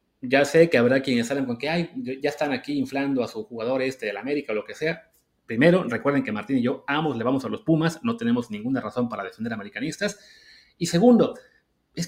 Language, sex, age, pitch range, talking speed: Spanish, male, 30-49, 125-175 Hz, 225 wpm